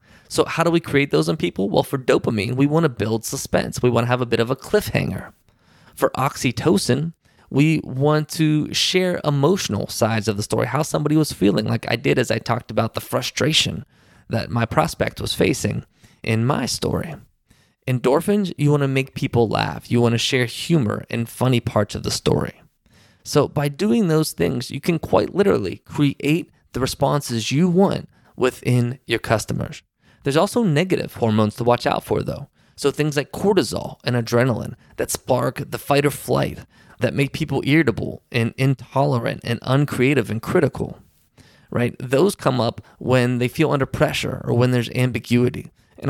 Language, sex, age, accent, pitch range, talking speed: English, male, 20-39, American, 115-150 Hz, 180 wpm